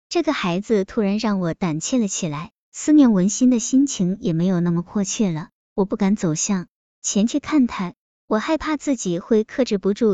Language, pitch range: Chinese, 185-245 Hz